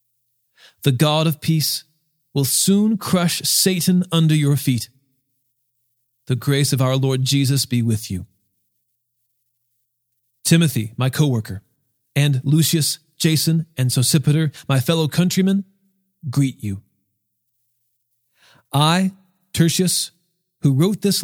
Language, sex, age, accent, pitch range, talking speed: English, male, 40-59, American, 125-180 Hz, 105 wpm